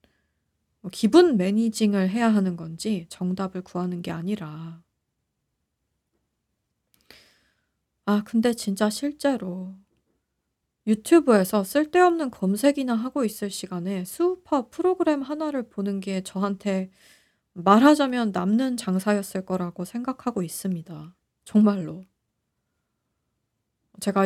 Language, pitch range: Korean, 190-240 Hz